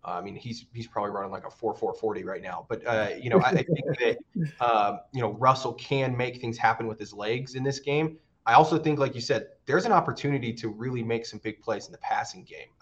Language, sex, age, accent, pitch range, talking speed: English, male, 20-39, American, 110-130 Hz, 255 wpm